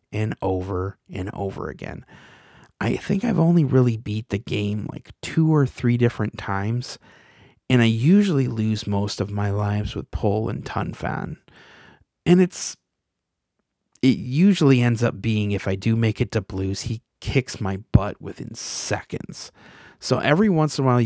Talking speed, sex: 165 wpm, male